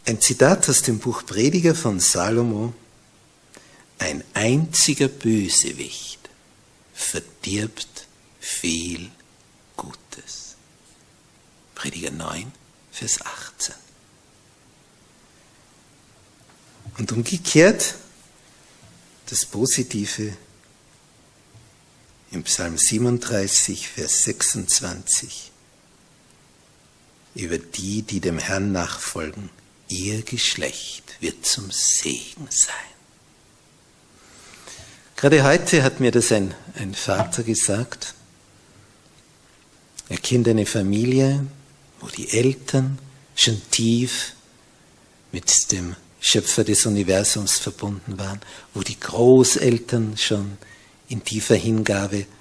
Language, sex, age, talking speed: German, male, 60-79, 80 wpm